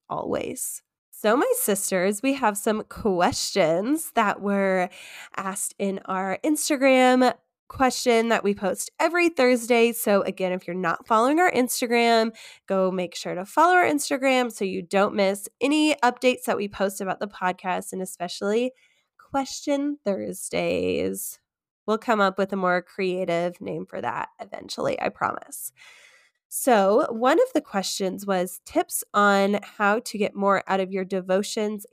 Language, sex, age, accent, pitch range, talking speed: English, female, 10-29, American, 185-245 Hz, 150 wpm